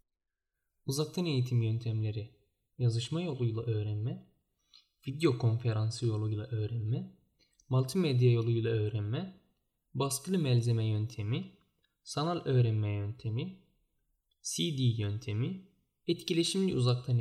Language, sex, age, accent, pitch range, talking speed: Turkish, male, 10-29, native, 115-160 Hz, 80 wpm